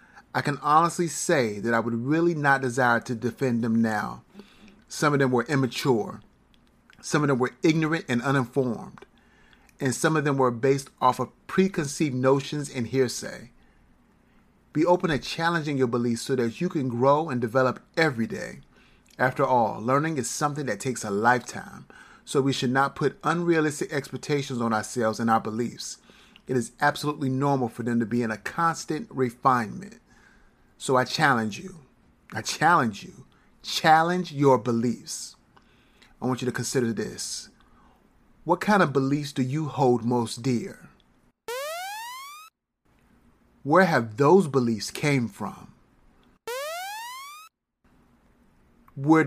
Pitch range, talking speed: 125-165 Hz, 145 wpm